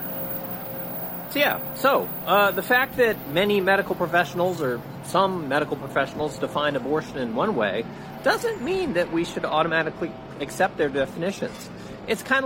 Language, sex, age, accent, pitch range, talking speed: English, male, 40-59, American, 140-180 Hz, 140 wpm